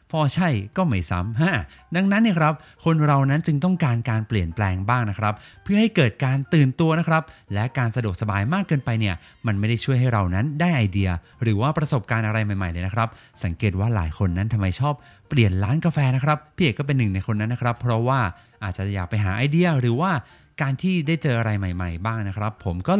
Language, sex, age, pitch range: Thai, male, 20-39, 105-150 Hz